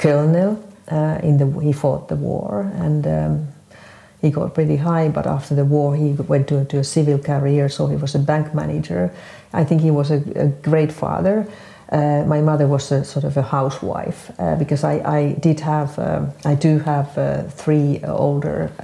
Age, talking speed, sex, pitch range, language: 50-69, 195 wpm, female, 140-160 Hz, English